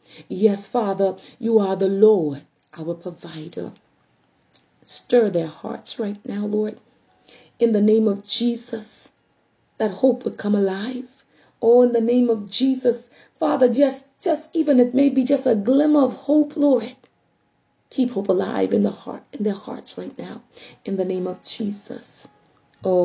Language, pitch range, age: English, 180-245 Hz, 40-59